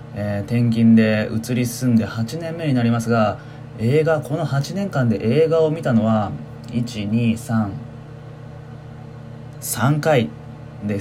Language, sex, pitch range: Japanese, male, 115-140 Hz